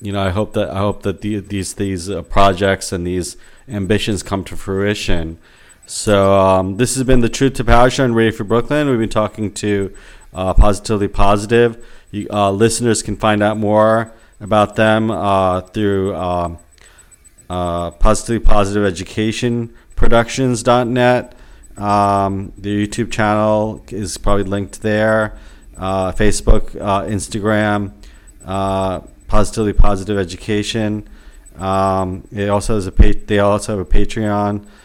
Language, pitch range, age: English, 95-110 Hz, 40-59